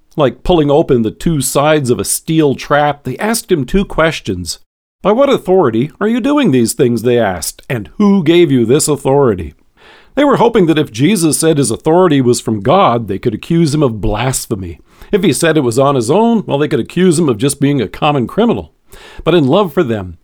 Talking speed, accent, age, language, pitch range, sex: 215 wpm, American, 50-69, English, 120-165 Hz, male